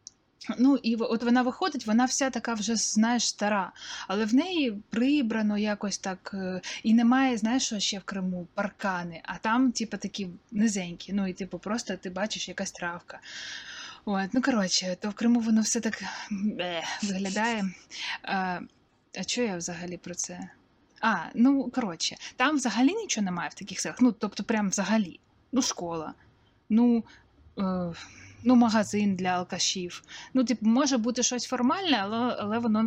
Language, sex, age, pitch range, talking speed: Ukrainian, female, 20-39, 185-235 Hz, 160 wpm